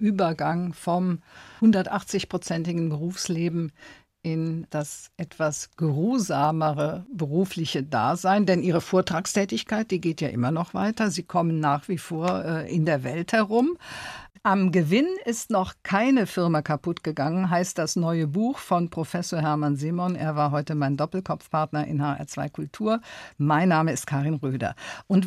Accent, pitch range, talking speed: German, 150-195 Hz, 135 wpm